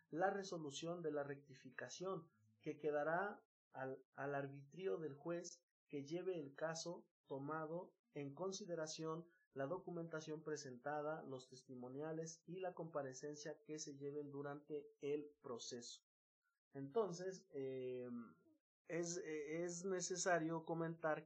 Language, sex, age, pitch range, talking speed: Spanish, male, 30-49, 135-170 Hz, 115 wpm